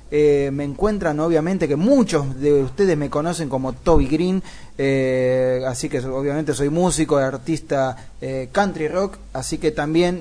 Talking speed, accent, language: 155 wpm, Argentinian, Spanish